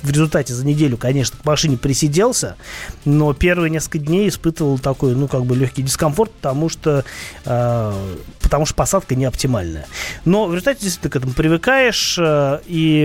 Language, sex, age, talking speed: Russian, male, 30-49, 160 wpm